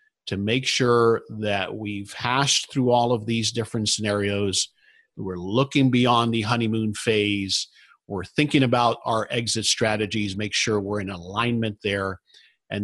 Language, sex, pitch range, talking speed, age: English, male, 105-135 Hz, 145 wpm, 50-69